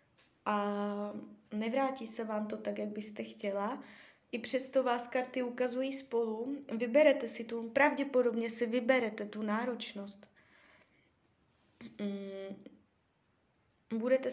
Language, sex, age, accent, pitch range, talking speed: Czech, female, 20-39, native, 210-250 Hz, 100 wpm